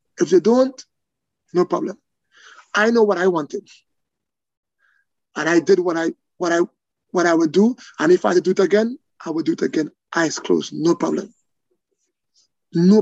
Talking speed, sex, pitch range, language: 185 wpm, male, 170-230 Hz, English